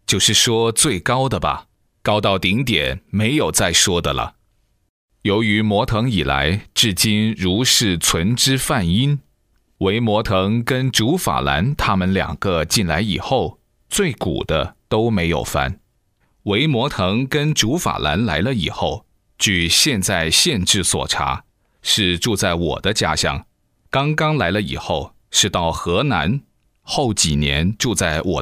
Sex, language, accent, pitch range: male, Chinese, native, 90-120 Hz